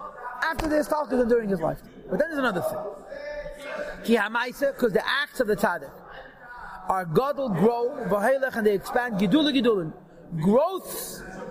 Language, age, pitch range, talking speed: English, 40-59, 225-285 Hz, 145 wpm